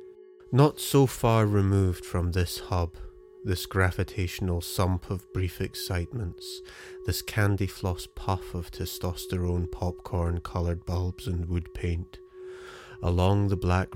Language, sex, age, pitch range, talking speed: English, male, 30-49, 85-100 Hz, 120 wpm